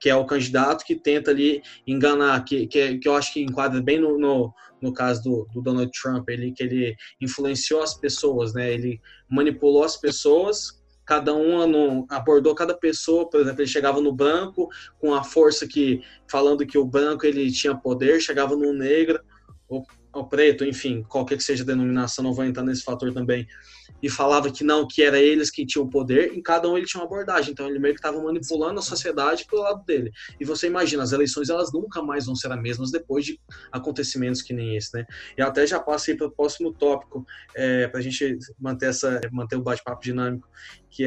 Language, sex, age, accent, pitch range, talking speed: Portuguese, male, 20-39, Brazilian, 130-150 Hz, 205 wpm